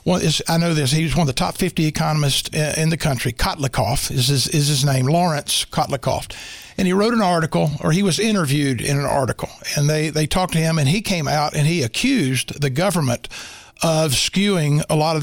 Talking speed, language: 215 wpm, English